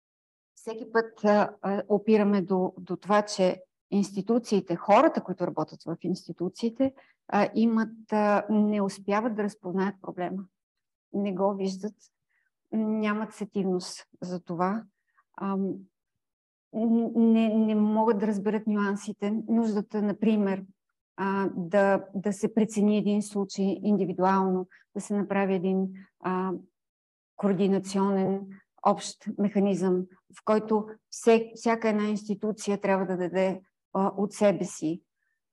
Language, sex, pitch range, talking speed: Bulgarian, female, 190-210 Hz, 110 wpm